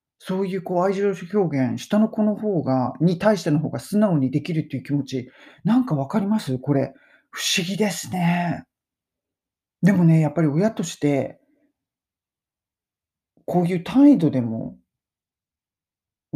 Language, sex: Japanese, male